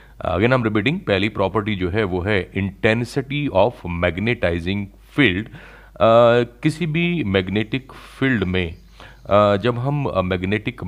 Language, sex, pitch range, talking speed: Hindi, male, 95-130 Hz, 115 wpm